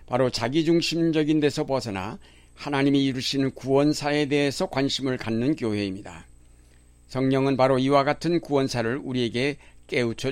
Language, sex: Korean, male